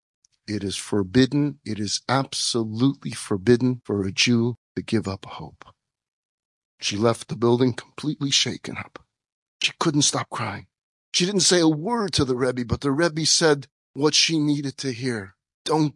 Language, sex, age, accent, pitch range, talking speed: English, male, 40-59, American, 140-160 Hz, 160 wpm